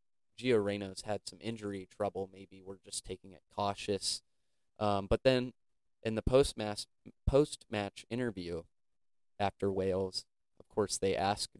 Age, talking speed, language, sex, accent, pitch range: 20-39, 130 wpm, English, male, American, 95-110 Hz